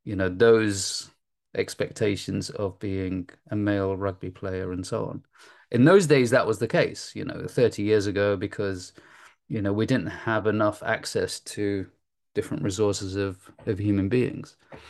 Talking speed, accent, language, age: 160 wpm, British, English, 30-49